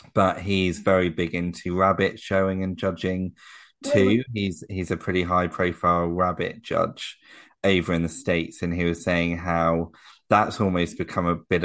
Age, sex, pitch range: 20-39, male, 85-95 Hz